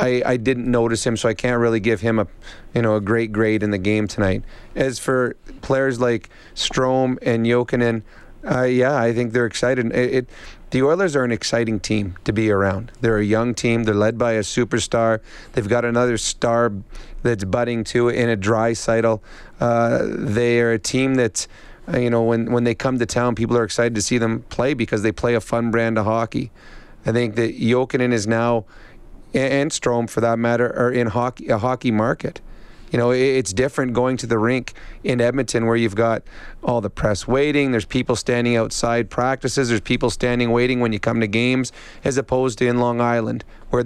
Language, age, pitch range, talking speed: English, 30-49, 115-125 Hz, 200 wpm